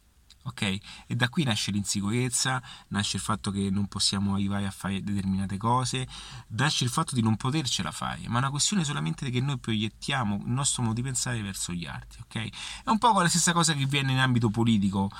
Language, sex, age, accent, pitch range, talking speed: Italian, male, 30-49, native, 105-130 Hz, 205 wpm